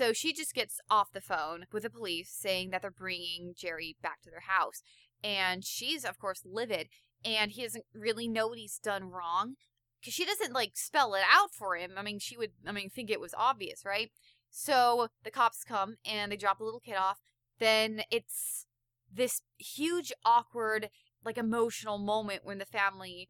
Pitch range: 185-230 Hz